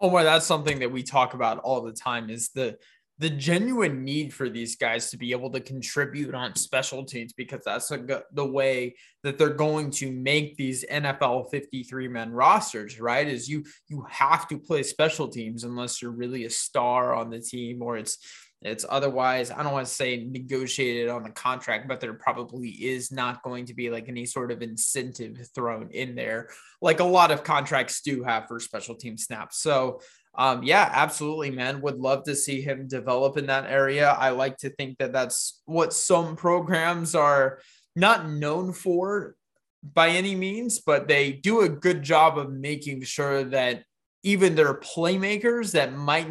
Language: English